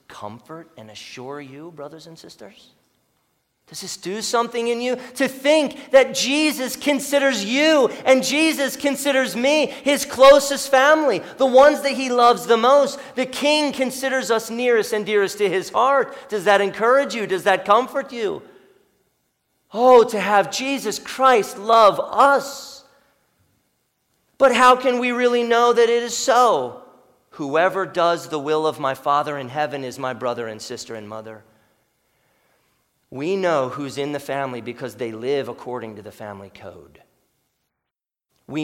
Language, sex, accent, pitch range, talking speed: English, male, American, 160-260 Hz, 155 wpm